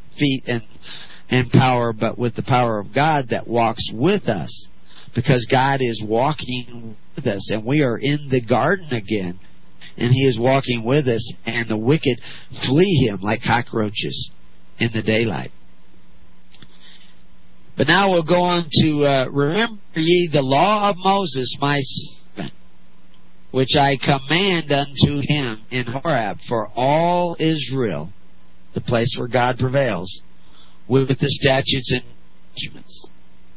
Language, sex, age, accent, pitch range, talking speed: English, male, 50-69, American, 115-150 Hz, 140 wpm